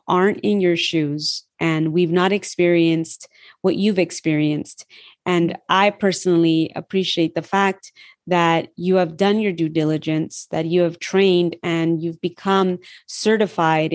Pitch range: 165-195 Hz